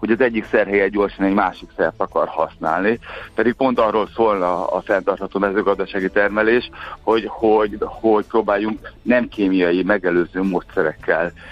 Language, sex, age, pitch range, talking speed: Hungarian, male, 60-79, 100-115 Hz, 135 wpm